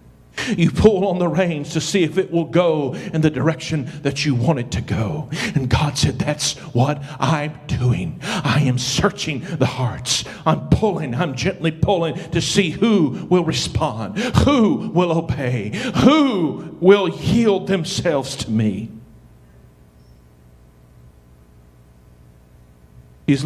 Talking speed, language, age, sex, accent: 135 wpm, English, 50-69, male, American